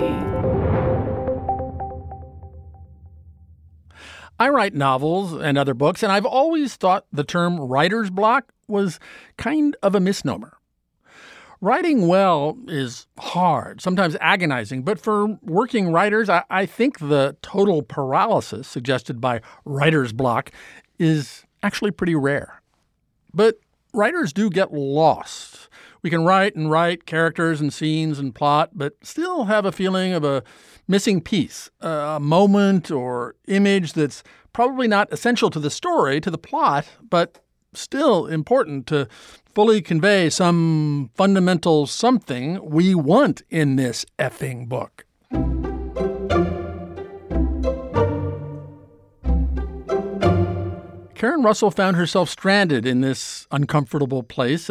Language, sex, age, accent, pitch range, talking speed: English, male, 50-69, American, 130-195 Hz, 115 wpm